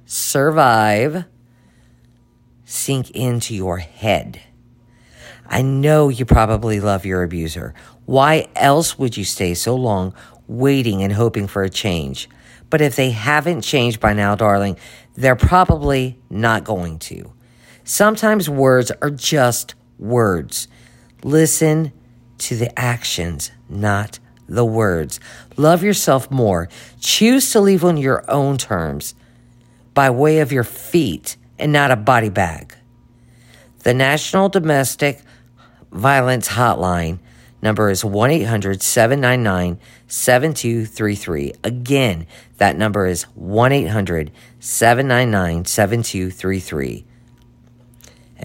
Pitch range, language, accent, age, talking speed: 100-130 Hz, English, American, 50-69, 105 wpm